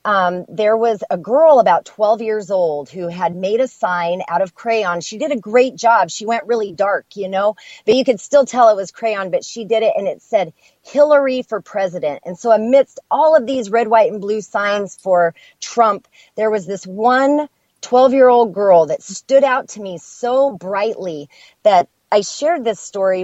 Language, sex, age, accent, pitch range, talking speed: English, female, 30-49, American, 180-235 Hz, 200 wpm